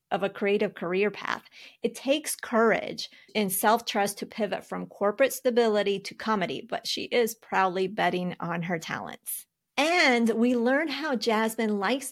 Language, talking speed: English, 155 wpm